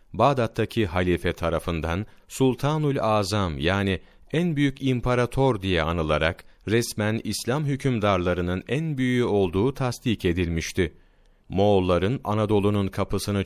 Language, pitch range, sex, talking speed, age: Turkish, 90-120 Hz, male, 100 wpm, 40-59